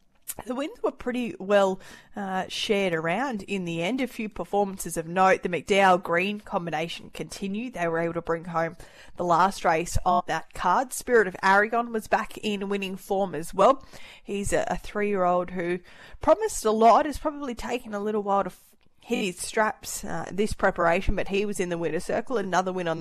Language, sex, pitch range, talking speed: English, female, 170-200 Hz, 195 wpm